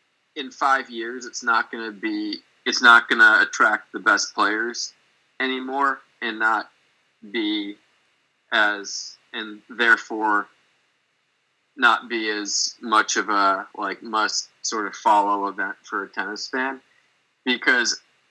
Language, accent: English, American